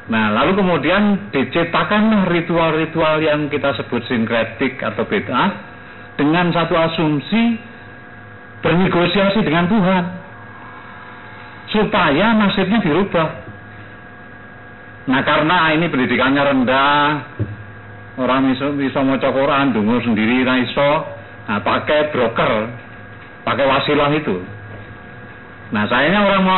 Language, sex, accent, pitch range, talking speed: Indonesian, male, native, 105-160 Hz, 95 wpm